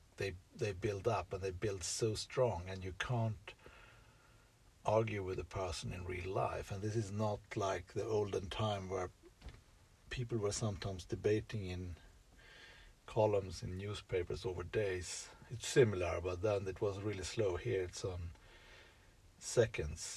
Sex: male